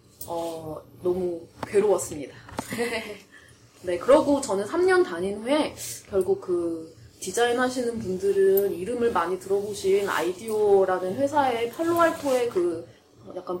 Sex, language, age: female, Korean, 20-39